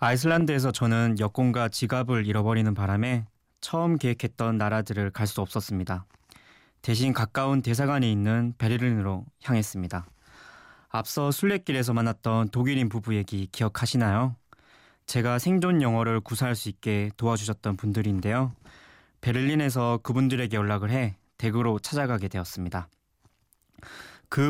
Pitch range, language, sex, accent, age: 105-130 Hz, Korean, male, native, 20-39